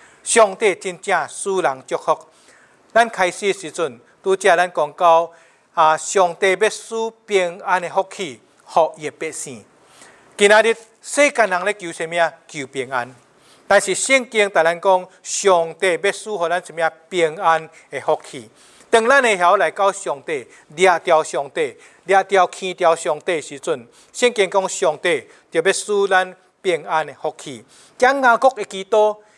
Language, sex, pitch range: English, male, 170-225 Hz